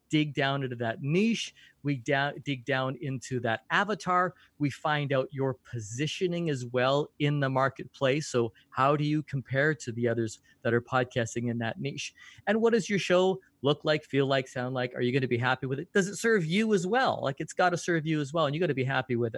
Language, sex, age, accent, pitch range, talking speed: English, male, 30-49, American, 135-180 Hz, 230 wpm